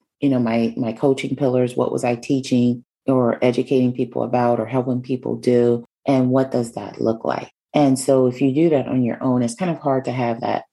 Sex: female